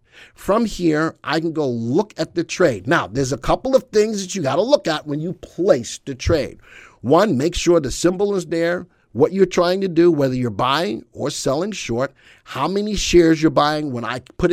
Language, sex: English, male